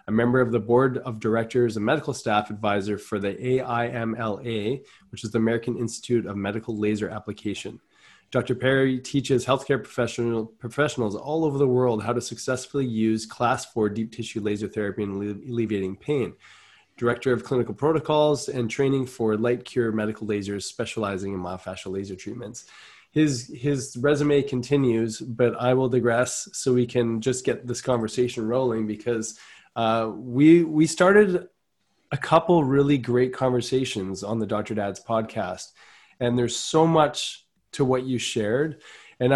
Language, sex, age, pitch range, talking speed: English, male, 20-39, 110-135 Hz, 155 wpm